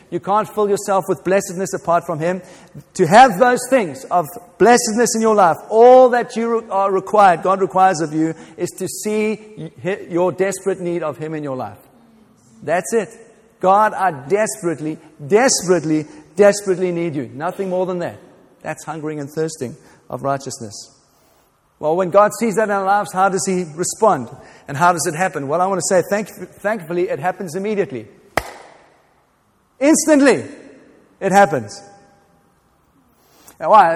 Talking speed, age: 155 wpm, 50-69